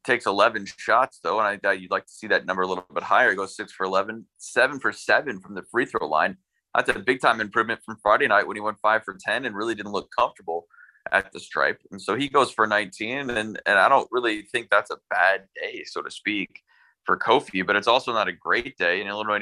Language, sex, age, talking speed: English, male, 20-39, 250 wpm